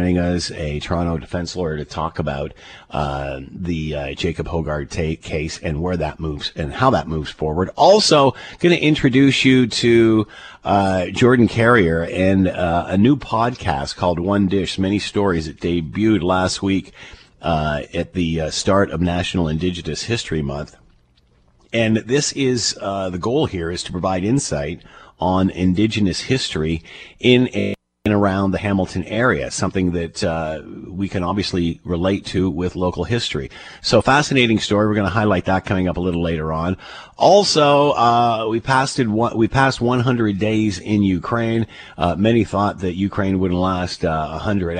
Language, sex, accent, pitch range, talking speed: English, male, American, 85-110 Hz, 165 wpm